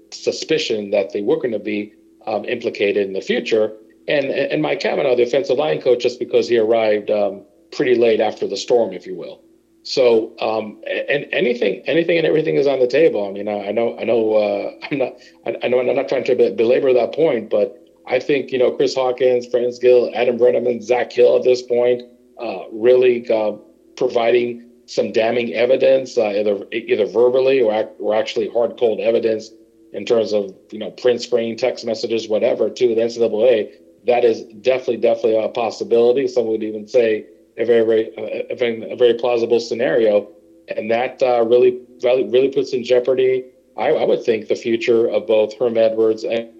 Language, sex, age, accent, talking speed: English, male, 40-59, American, 190 wpm